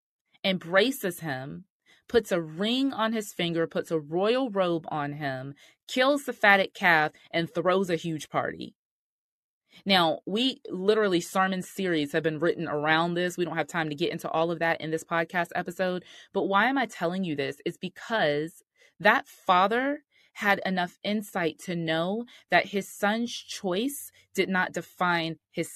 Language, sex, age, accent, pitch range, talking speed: English, female, 30-49, American, 160-195 Hz, 165 wpm